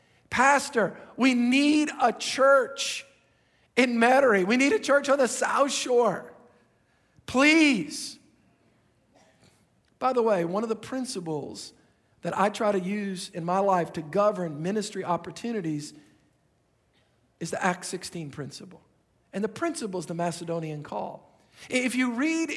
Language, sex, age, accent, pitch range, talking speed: English, male, 50-69, American, 185-250 Hz, 135 wpm